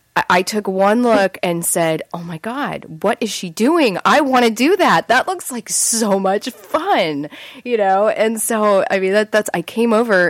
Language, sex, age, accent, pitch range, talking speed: English, female, 30-49, American, 150-190 Hz, 205 wpm